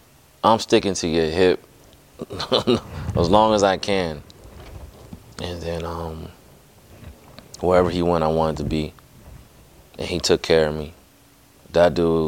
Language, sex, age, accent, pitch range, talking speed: English, male, 30-49, American, 75-85 Hz, 135 wpm